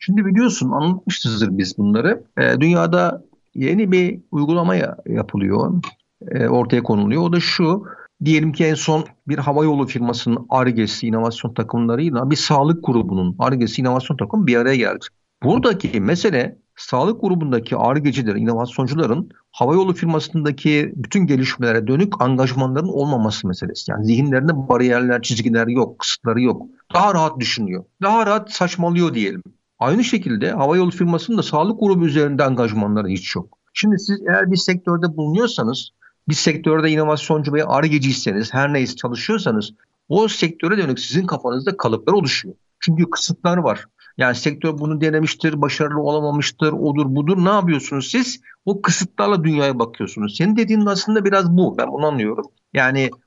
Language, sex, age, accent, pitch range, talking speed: Turkish, male, 50-69, native, 130-185 Hz, 140 wpm